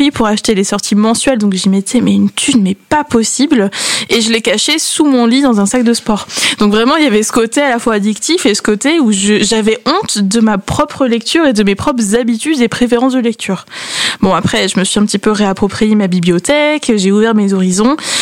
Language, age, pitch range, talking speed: French, 20-39, 200-245 Hz, 235 wpm